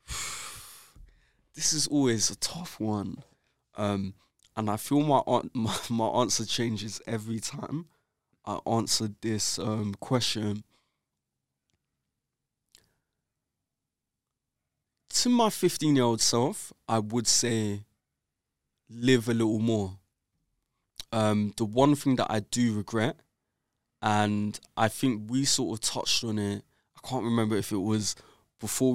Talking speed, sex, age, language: 120 wpm, male, 20-39, English